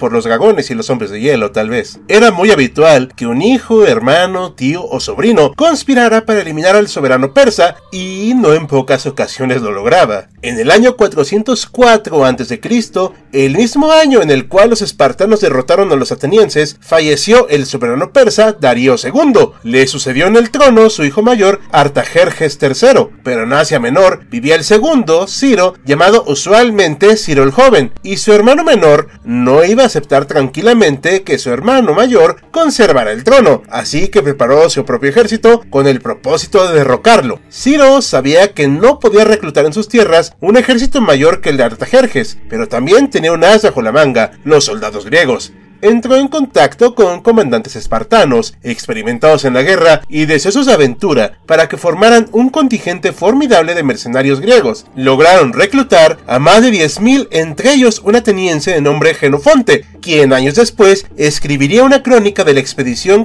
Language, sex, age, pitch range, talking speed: Spanish, male, 40-59, 145-235 Hz, 170 wpm